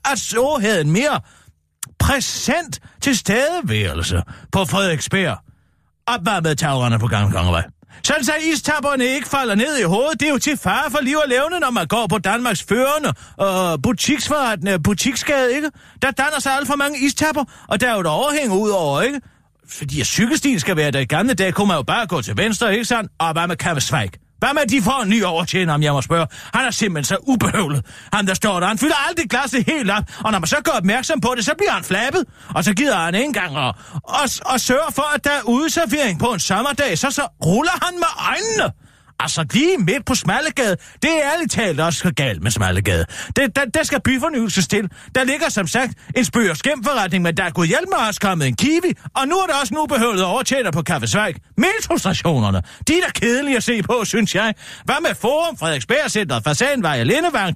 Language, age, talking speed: Danish, 40-59, 215 wpm